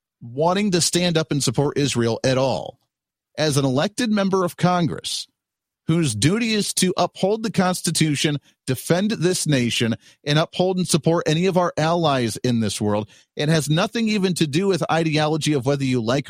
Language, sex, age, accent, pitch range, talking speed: English, male, 40-59, American, 115-175 Hz, 175 wpm